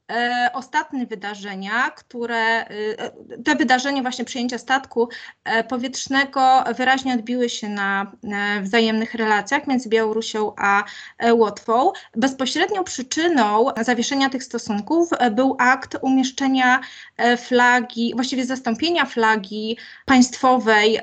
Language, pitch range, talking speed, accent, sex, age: Polish, 225-265 Hz, 90 wpm, native, female, 20-39